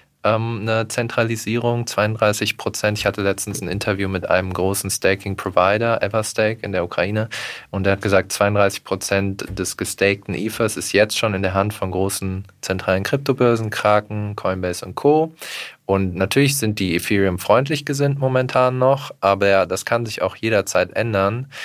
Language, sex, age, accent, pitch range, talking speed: German, male, 20-39, German, 95-105 Hz, 155 wpm